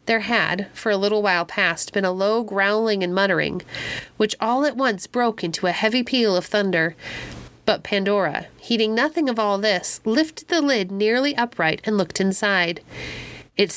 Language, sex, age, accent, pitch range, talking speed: English, female, 30-49, American, 190-260 Hz, 175 wpm